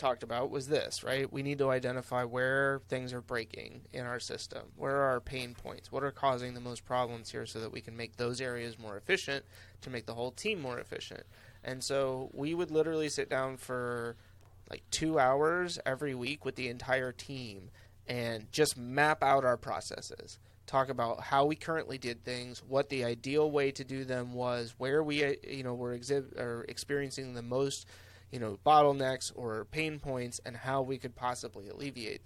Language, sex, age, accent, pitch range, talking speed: English, male, 30-49, American, 120-140 Hz, 190 wpm